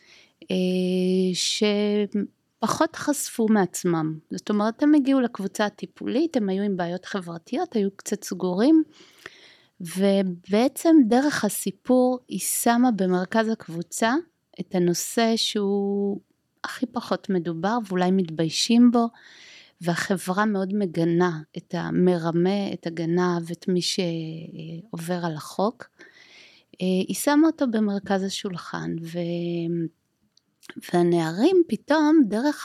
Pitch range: 175-225 Hz